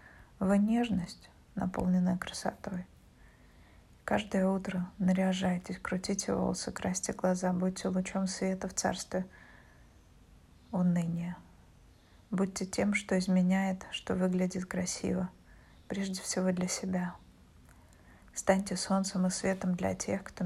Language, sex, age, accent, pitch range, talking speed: Russian, female, 20-39, native, 170-190 Hz, 105 wpm